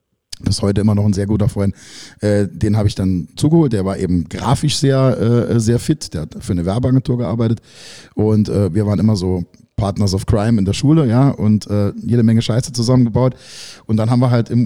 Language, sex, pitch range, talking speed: German, male, 100-120 Hz, 215 wpm